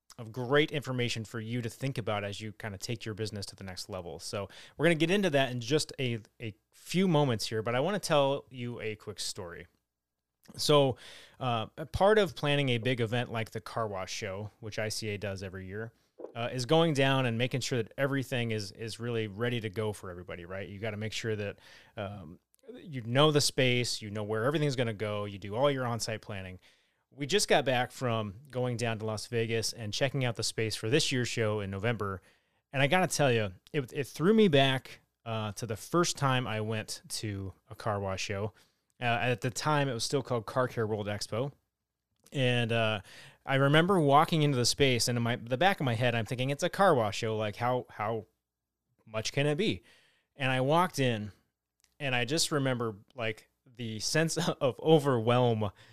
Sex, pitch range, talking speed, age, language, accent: male, 110-135 Hz, 215 wpm, 30-49, English, American